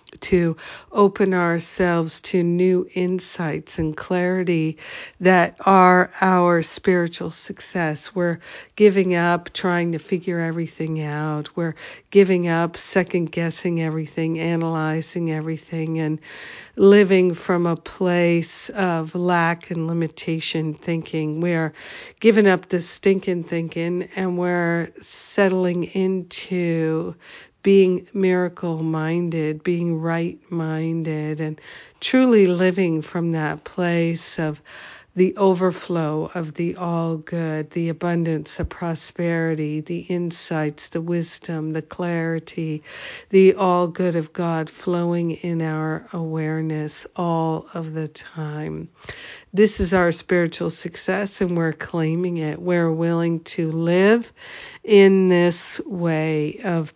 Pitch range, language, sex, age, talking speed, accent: 160-180 Hz, English, female, 50-69, 115 wpm, American